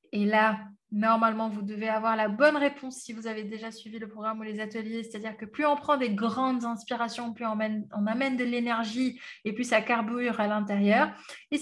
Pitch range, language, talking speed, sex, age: 215-265 Hz, French, 210 wpm, female, 20-39